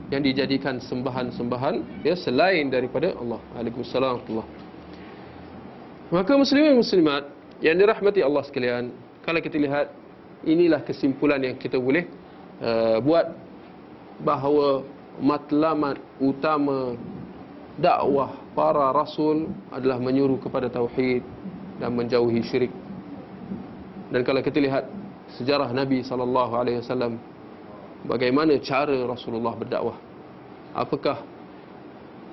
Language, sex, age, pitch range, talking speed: Malay, male, 40-59, 125-155 Hz, 95 wpm